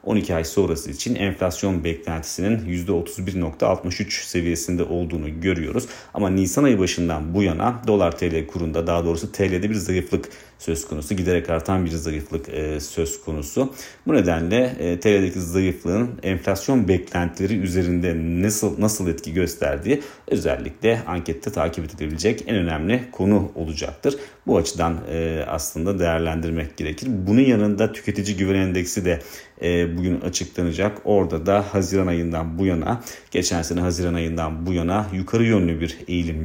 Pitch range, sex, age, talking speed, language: 80-100 Hz, male, 40-59, 140 wpm, Turkish